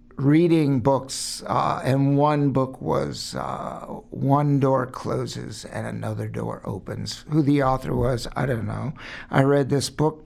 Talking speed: 150 wpm